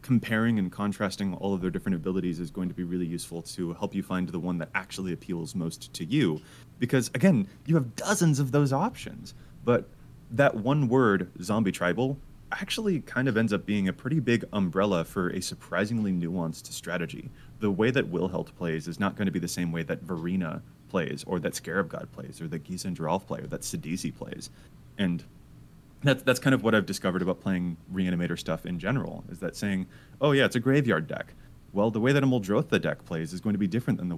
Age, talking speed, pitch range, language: 30-49, 215 wpm, 90-115 Hz, English